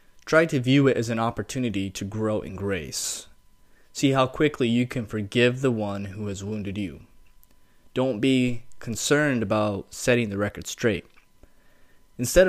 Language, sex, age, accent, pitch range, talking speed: English, male, 20-39, American, 100-125 Hz, 155 wpm